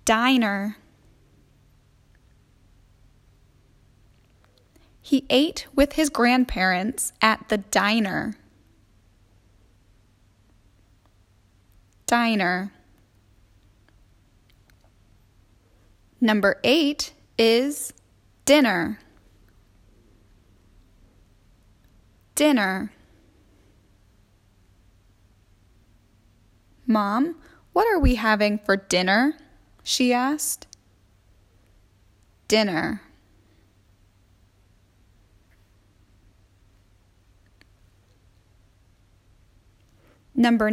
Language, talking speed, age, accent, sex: English, 40 wpm, 10-29, American, female